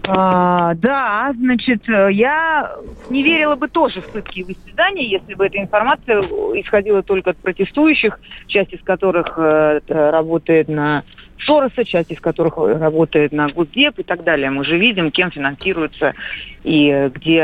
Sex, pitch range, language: female, 150-200 Hz, Russian